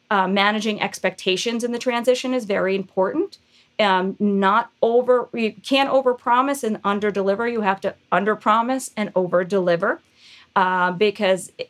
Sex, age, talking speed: female, 40-59, 130 wpm